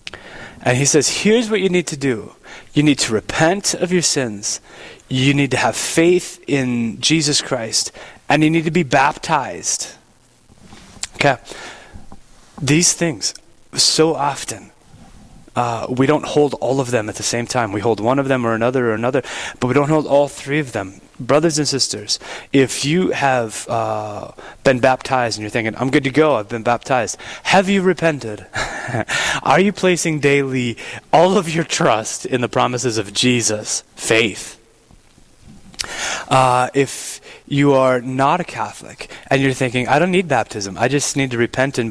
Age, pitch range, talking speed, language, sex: 30-49, 120-155 Hz, 170 wpm, English, male